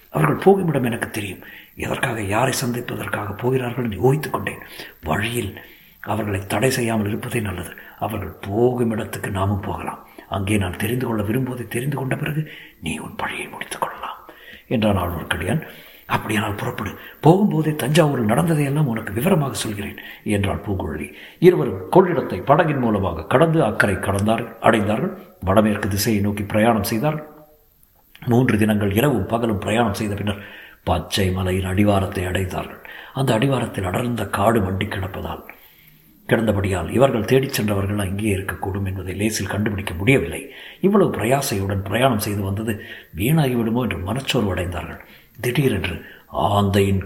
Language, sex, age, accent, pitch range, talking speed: Tamil, male, 60-79, native, 100-125 Hz, 125 wpm